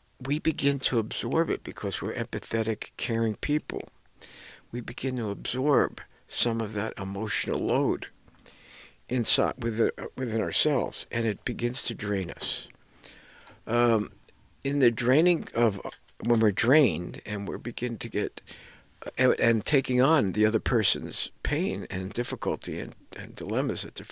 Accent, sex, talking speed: American, male, 140 wpm